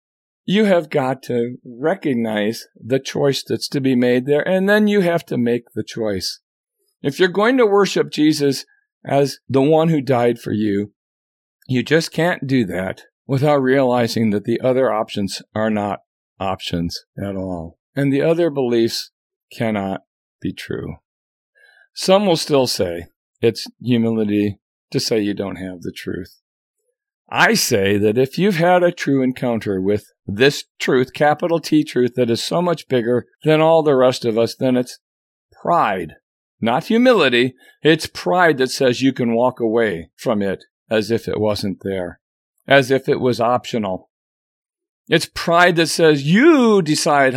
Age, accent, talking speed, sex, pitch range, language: 50-69, American, 160 wpm, male, 115-160 Hz, English